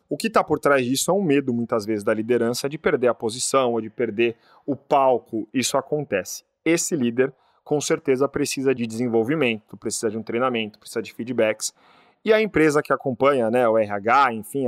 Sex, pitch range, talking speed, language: male, 115-145 Hz, 190 wpm, Portuguese